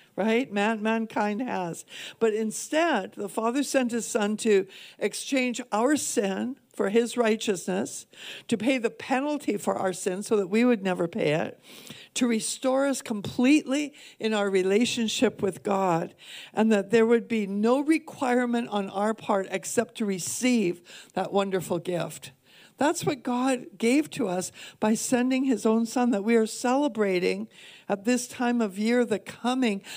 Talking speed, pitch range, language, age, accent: 155 wpm, 200-245 Hz, English, 60-79, American